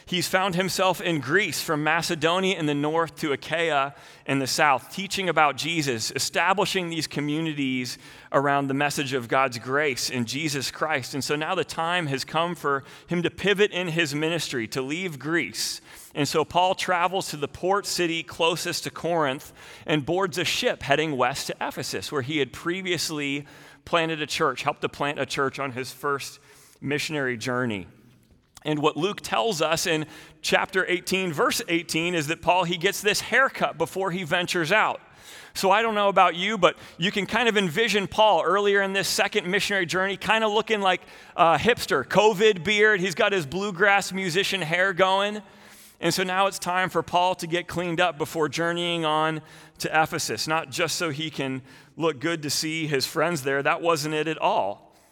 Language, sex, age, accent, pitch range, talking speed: English, male, 30-49, American, 150-185 Hz, 185 wpm